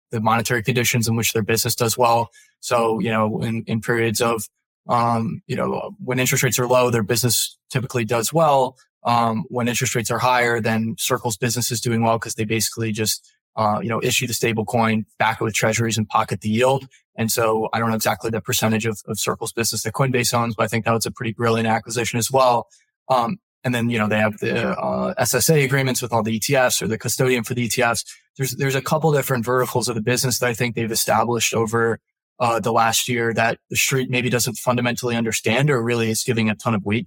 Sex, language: male, English